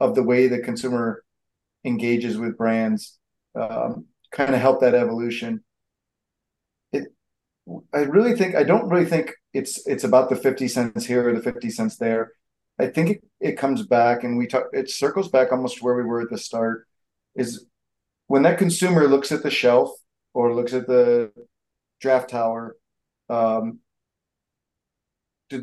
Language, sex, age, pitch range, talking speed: English, male, 40-59, 115-140 Hz, 165 wpm